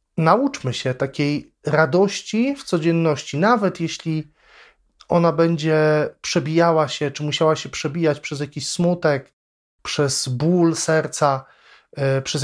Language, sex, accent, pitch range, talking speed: Polish, male, native, 135-170 Hz, 110 wpm